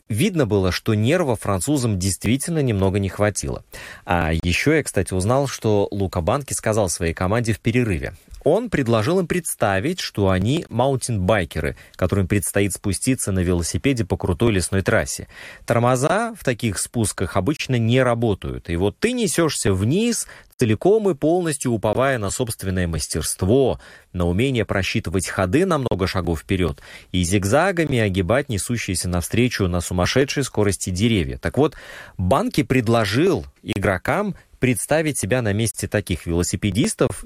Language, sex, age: Russian, male, 30-49